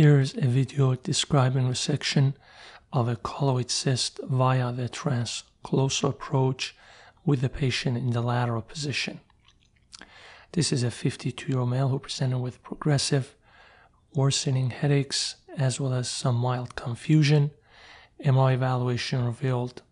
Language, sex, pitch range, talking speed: English, male, 125-140 Hz, 130 wpm